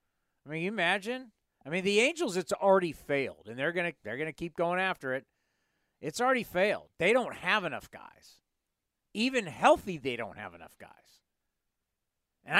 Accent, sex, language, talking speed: American, male, English, 180 wpm